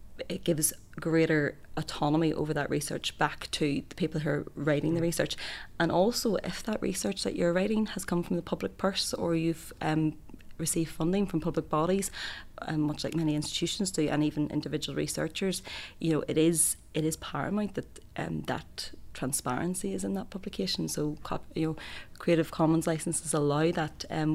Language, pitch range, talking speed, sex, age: English, 150-170 Hz, 175 wpm, female, 30-49